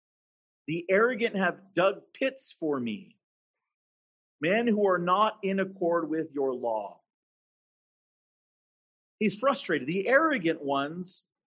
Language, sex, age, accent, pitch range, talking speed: English, male, 50-69, American, 180-235 Hz, 110 wpm